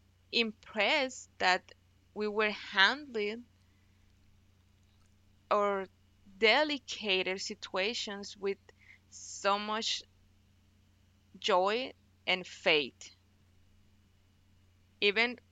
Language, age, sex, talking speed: English, 20-39, female, 60 wpm